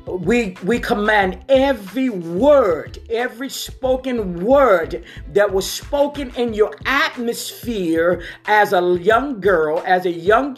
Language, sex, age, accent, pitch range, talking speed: English, male, 50-69, American, 195-255 Hz, 120 wpm